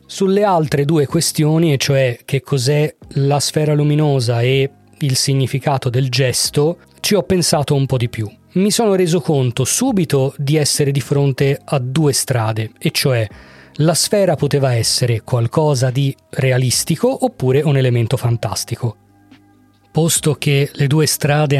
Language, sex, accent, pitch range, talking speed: Italian, male, native, 130-155 Hz, 145 wpm